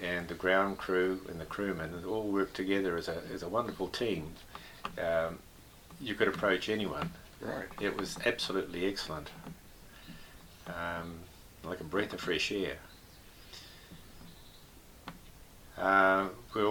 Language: English